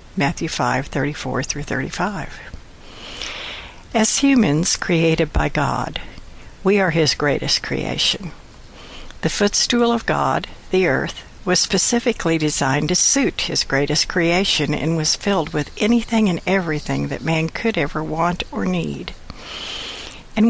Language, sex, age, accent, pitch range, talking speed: English, female, 60-79, American, 150-185 Hz, 130 wpm